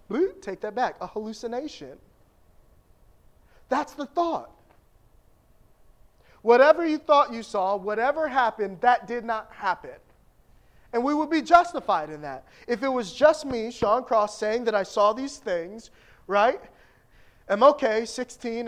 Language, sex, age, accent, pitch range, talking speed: English, male, 30-49, American, 195-270 Hz, 135 wpm